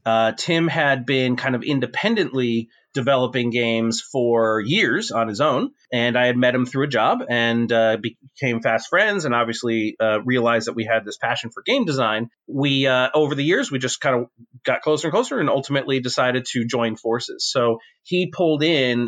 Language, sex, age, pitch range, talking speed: English, male, 30-49, 120-160 Hz, 195 wpm